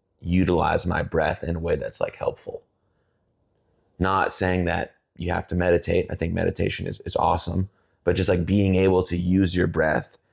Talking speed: 180 wpm